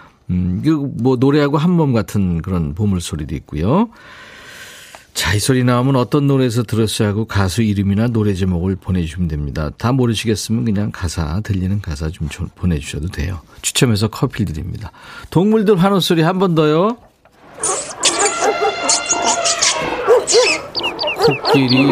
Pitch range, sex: 100-155 Hz, male